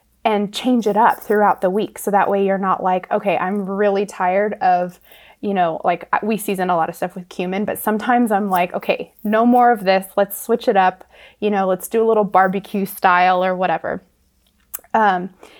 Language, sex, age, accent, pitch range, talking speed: English, female, 20-39, American, 195-245 Hz, 205 wpm